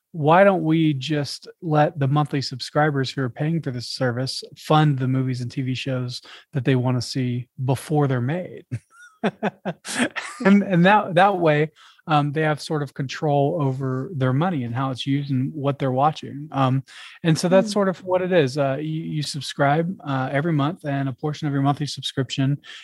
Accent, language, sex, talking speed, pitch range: American, English, male, 190 wpm, 130-150 Hz